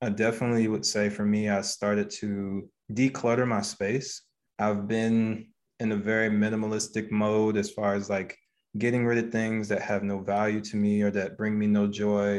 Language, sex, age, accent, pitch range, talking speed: English, male, 20-39, American, 100-115 Hz, 190 wpm